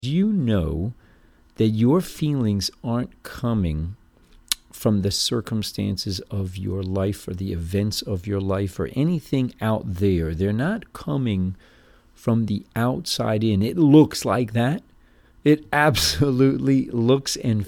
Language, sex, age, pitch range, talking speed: English, male, 50-69, 100-125 Hz, 130 wpm